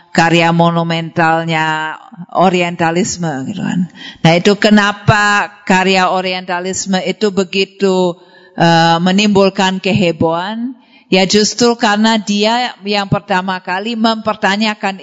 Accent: native